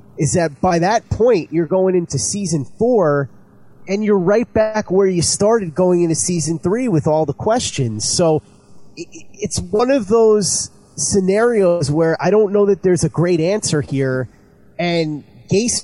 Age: 30-49